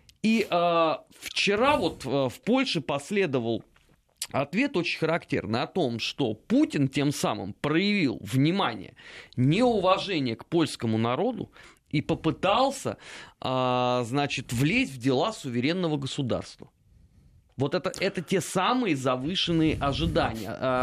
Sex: male